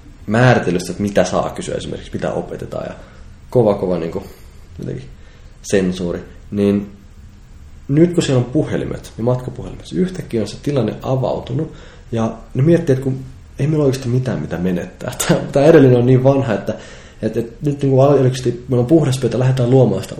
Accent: native